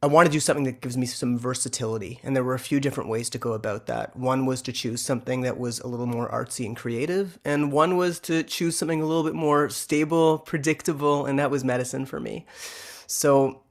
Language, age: English, 30-49